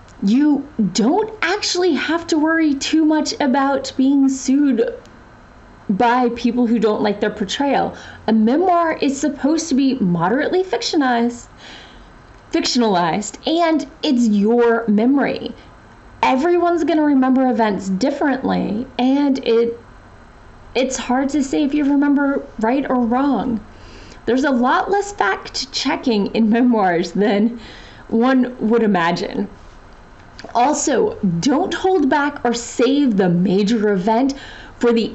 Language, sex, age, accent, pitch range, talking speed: English, female, 30-49, American, 230-300 Hz, 120 wpm